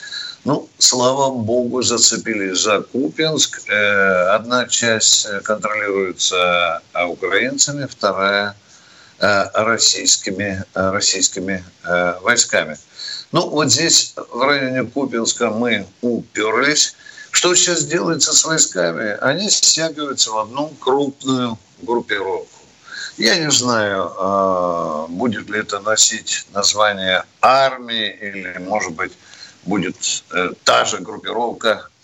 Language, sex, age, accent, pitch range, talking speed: Russian, male, 60-79, native, 100-140 Hz, 95 wpm